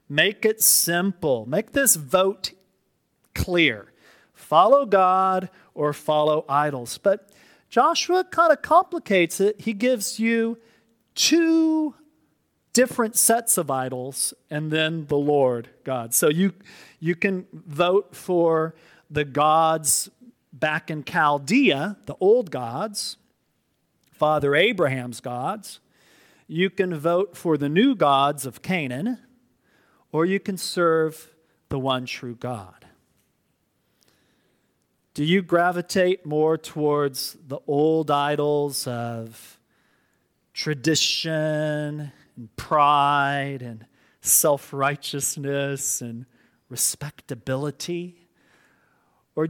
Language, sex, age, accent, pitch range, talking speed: English, male, 40-59, American, 135-195 Hz, 100 wpm